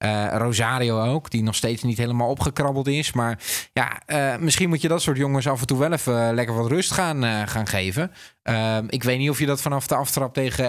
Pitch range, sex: 115-140 Hz, male